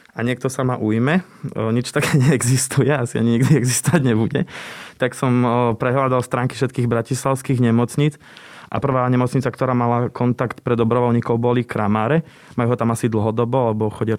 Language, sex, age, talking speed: Slovak, male, 20-39, 155 wpm